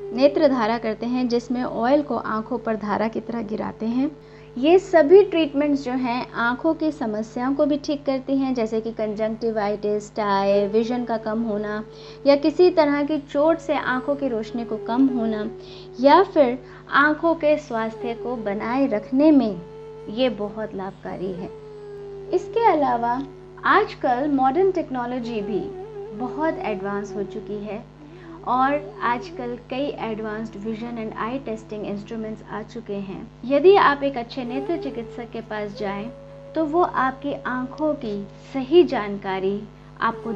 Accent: native